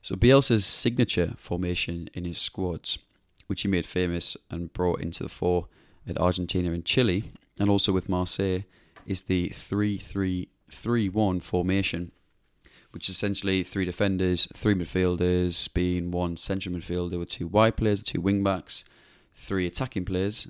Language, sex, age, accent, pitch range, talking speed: English, male, 20-39, British, 85-100 Hz, 150 wpm